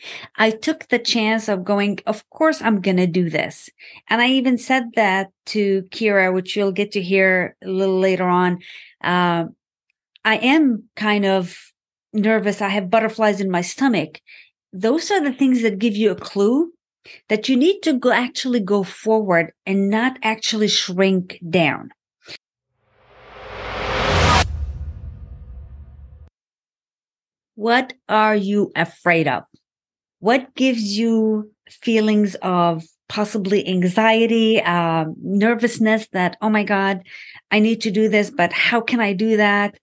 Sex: female